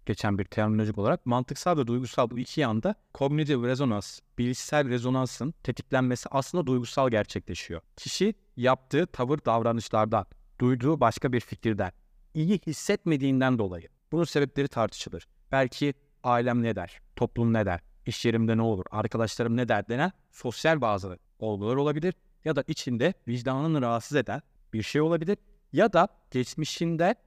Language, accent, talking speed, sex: Turkish, native, 140 wpm, male